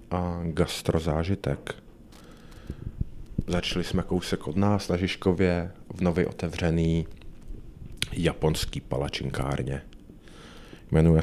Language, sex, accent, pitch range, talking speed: Czech, male, native, 80-100 Hz, 80 wpm